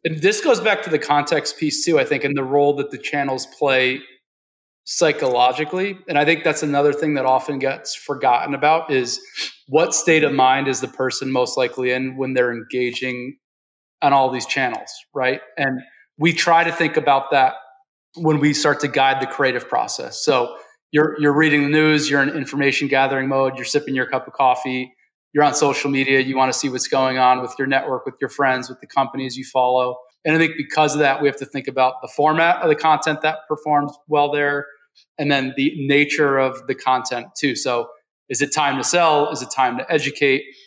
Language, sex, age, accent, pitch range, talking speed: English, male, 30-49, American, 130-155 Hz, 210 wpm